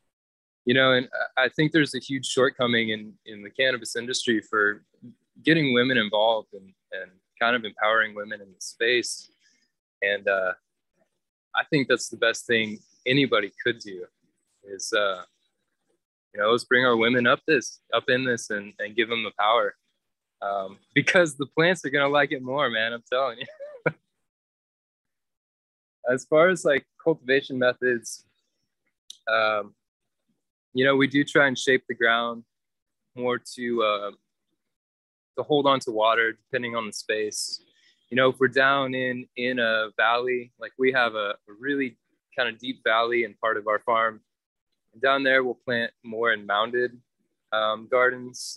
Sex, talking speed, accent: male, 165 wpm, American